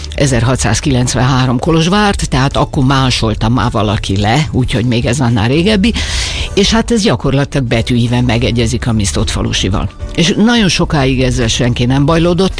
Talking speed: 140 wpm